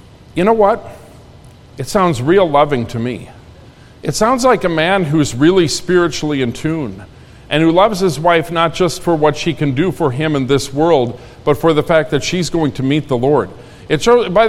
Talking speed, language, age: 200 wpm, English, 50-69